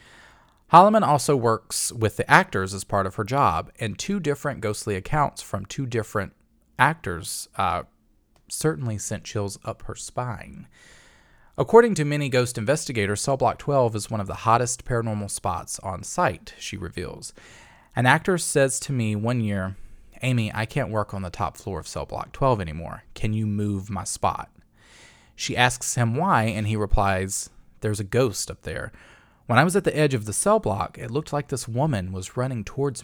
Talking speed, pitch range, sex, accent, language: 185 wpm, 100-140 Hz, male, American, English